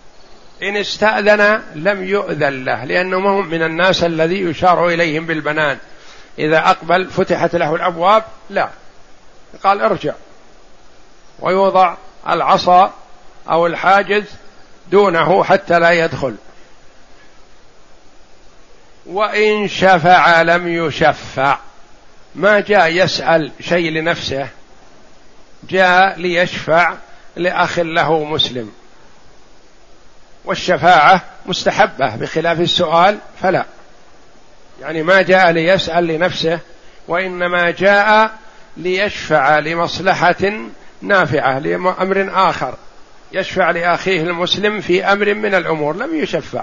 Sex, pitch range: male, 165-195 Hz